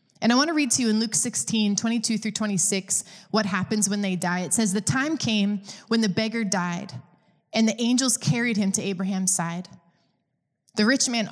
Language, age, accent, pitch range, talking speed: English, 20-39, American, 190-230 Hz, 200 wpm